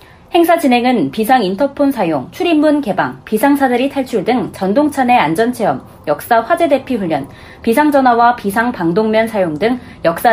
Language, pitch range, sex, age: Korean, 215-295 Hz, female, 30-49